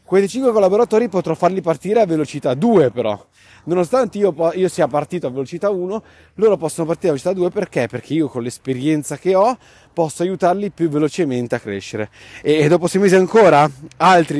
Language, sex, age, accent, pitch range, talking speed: Italian, male, 30-49, native, 135-190 Hz, 180 wpm